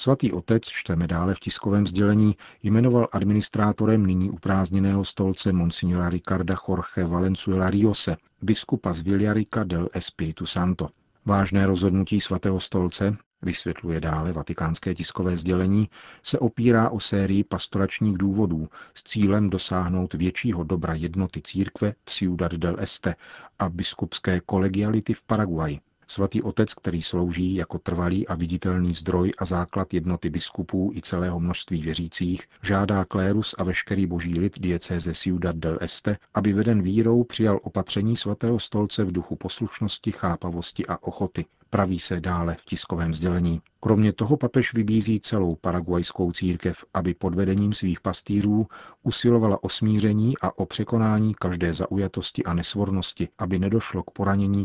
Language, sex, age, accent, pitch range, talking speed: Czech, male, 40-59, native, 90-105 Hz, 140 wpm